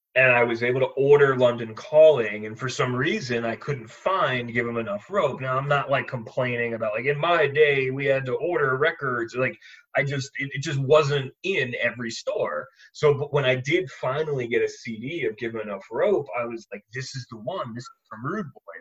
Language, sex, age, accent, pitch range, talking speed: English, male, 30-49, American, 120-145 Hz, 225 wpm